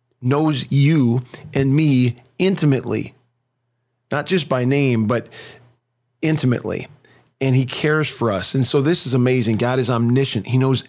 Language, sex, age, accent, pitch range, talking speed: English, male, 40-59, American, 115-135 Hz, 145 wpm